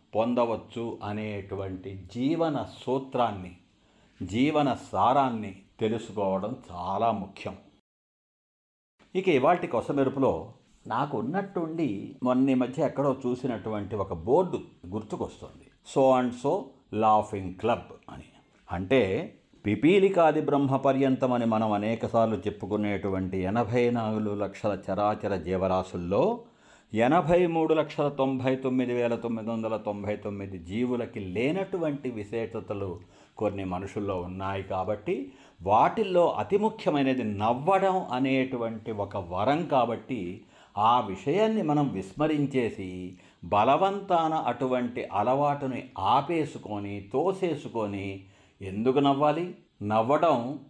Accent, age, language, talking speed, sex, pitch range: native, 50-69, Telugu, 90 wpm, male, 100-135 Hz